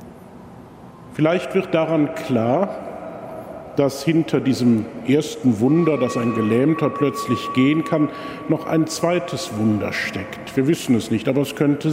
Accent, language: German, German